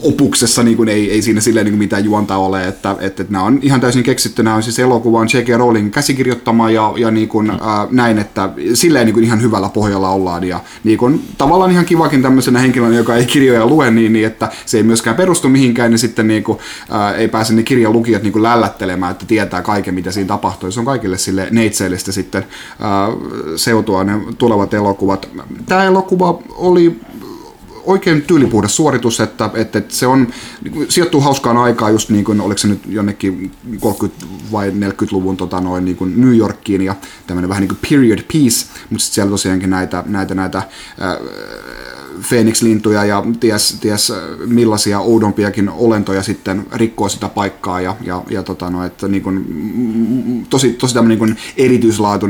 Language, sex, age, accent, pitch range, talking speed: Finnish, male, 30-49, native, 95-115 Hz, 180 wpm